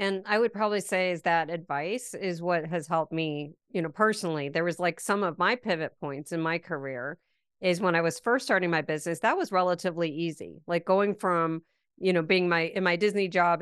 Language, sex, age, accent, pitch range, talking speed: English, female, 50-69, American, 170-205 Hz, 220 wpm